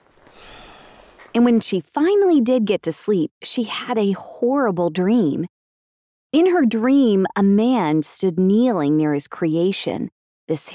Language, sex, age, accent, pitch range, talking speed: English, female, 30-49, American, 175-260 Hz, 135 wpm